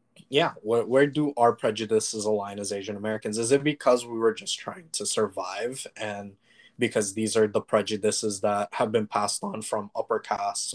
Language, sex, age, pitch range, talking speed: English, male, 20-39, 105-130 Hz, 185 wpm